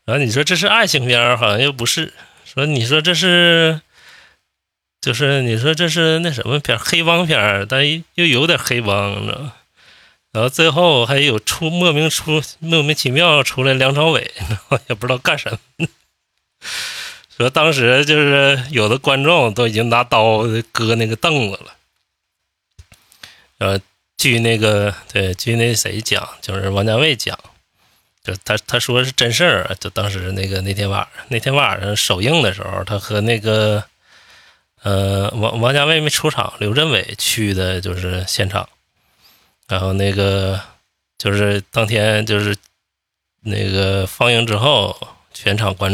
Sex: male